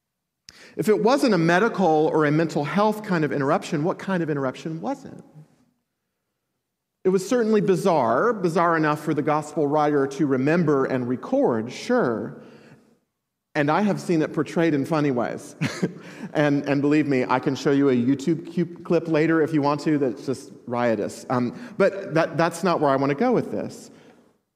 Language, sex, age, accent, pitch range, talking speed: English, male, 40-59, American, 150-215 Hz, 180 wpm